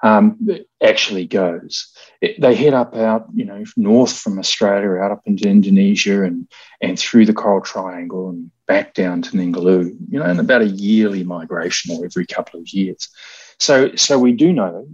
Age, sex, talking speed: 40-59, male, 180 wpm